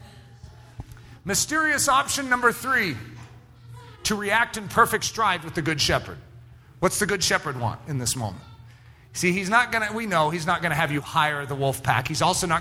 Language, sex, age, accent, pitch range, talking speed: English, male, 40-59, American, 120-190 Hz, 195 wpm